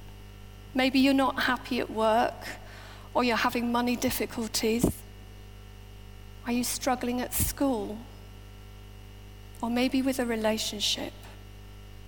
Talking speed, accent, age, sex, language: 105 wpm, British, 40-59, female, English